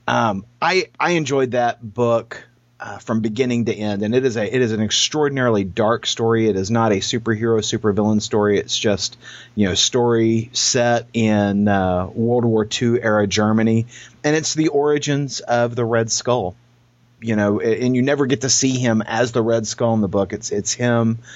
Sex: male